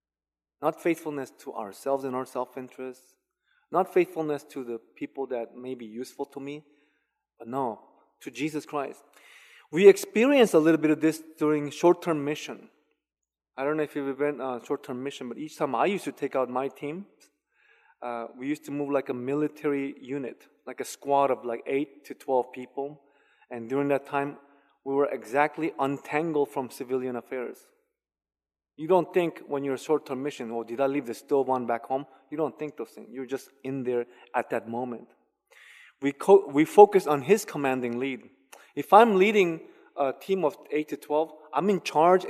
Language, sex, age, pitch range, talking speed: English, male, 20-39, 130-155 Hz, 185 wpm